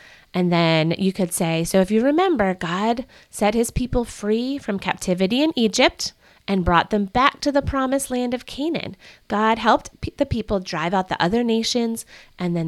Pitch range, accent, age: 170-235 Hz, American, 30-49